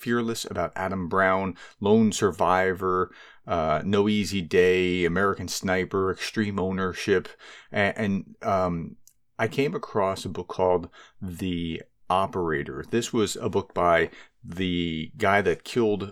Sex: male